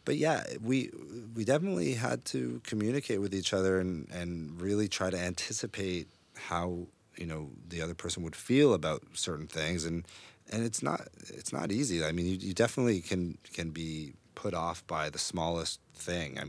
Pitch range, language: 80-95 Hz, English